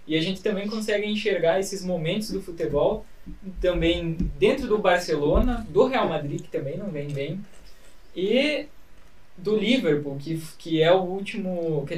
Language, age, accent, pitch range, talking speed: Portuguese, 10-29, Brazilian, 145-195 Hz, 155 wpm